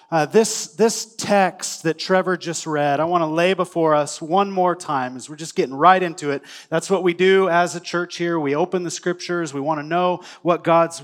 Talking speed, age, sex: 230 wpm, 30-49, male